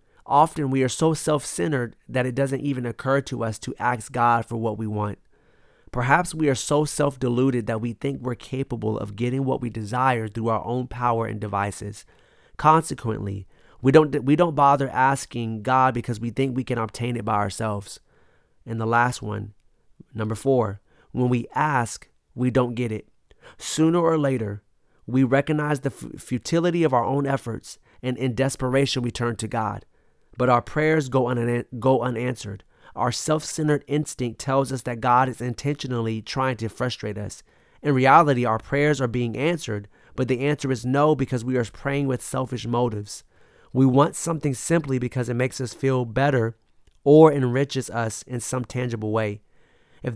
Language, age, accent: English, 30-49, American